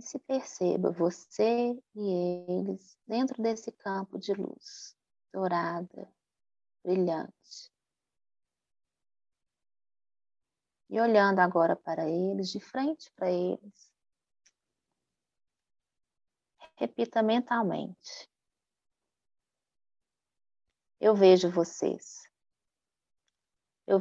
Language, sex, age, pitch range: Portuguese, female, 20-39, 170-215 Hz